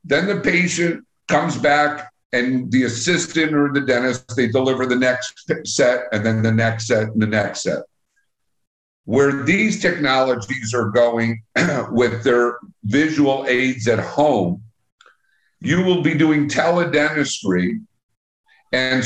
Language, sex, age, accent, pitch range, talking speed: English, male, 50-69, American, 125-155 Hz, 130 wpm